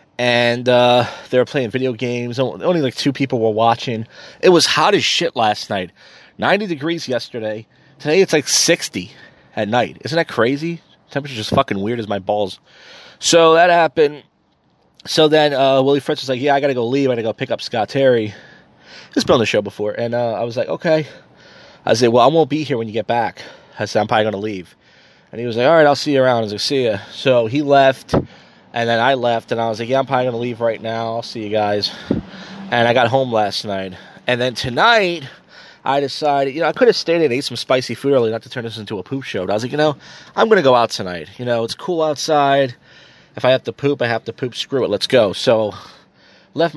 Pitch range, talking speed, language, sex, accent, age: 115-145 Hz, 240 wpm, English, male, American, 20-39